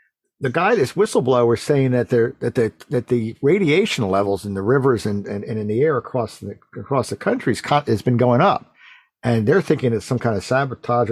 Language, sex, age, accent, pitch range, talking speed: English, male, 50-69, American, 115-155 Hz, 215 wpm